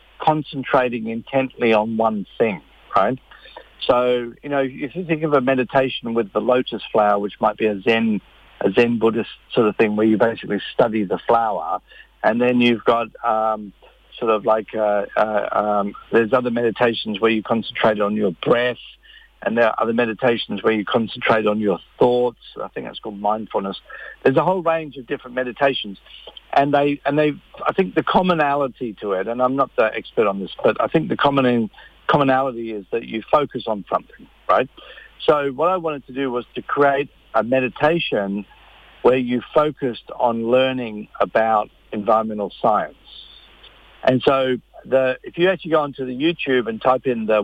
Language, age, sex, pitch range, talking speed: English, 50-69, male, 110-135 Hz, 180 wpm